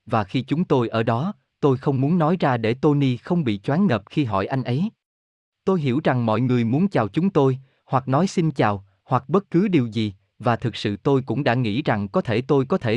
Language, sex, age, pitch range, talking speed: Vietnamese, male, 20-39, 115-160 Hz, 240 wpm